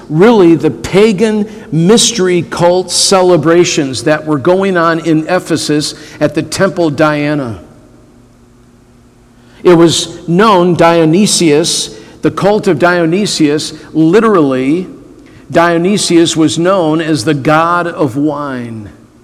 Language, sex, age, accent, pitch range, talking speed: English, male, 50-69, American, 150-185 Hz, 105 wpm